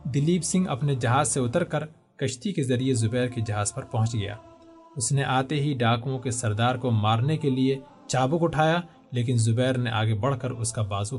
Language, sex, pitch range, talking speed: Urdu, male, 125-165 Hz, 205 wpm